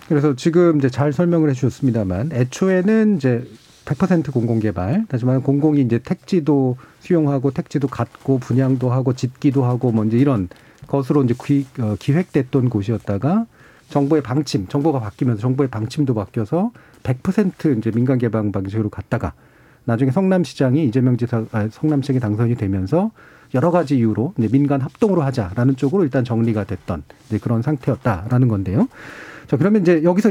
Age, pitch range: 40-59, 120-160 Hz